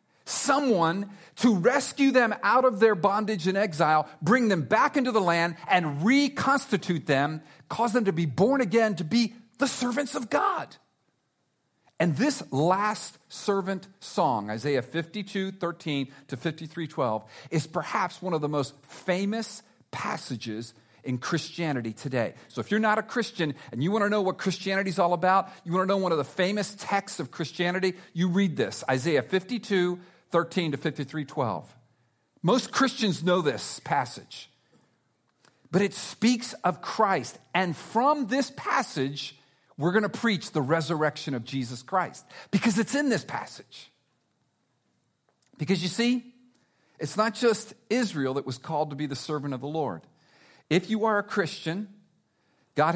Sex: male